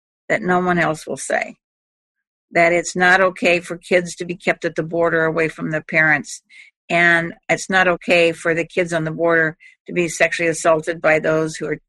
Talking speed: 190 wpm